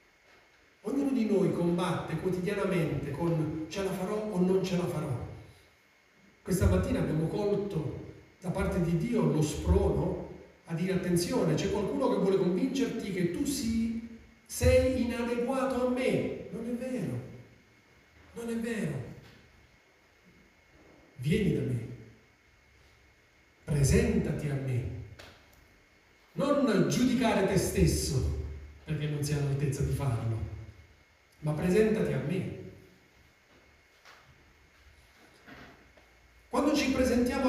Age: 40-59